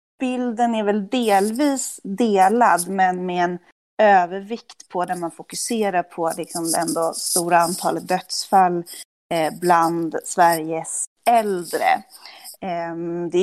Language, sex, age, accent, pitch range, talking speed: Swedish, female, 30-49, native, 170-195 Hz, 110 wpm